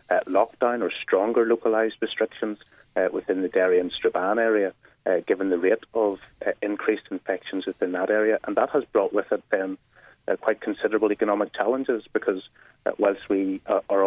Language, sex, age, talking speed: English, male, 30-49, 180 wpm